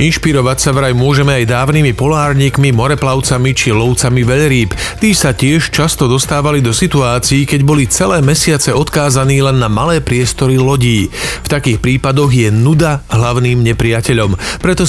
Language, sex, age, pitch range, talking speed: Slovak, male, 40-59, 120-150 Hz, 145 wpm